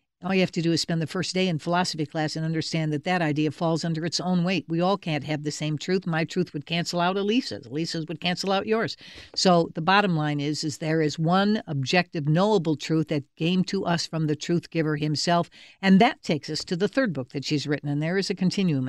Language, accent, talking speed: English, American, 250 wpm